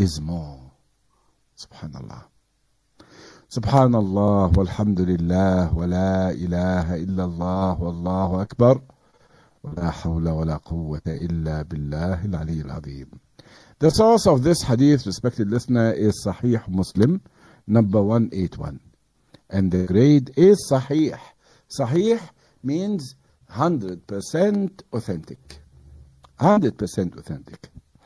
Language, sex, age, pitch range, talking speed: English, male, 60-79, 90-140 Hz, 105 wpm